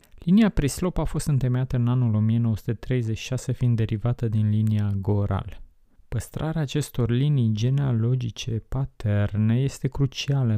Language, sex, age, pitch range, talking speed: Romanian, male, 20-39, 105-130 Hz, 115 wpm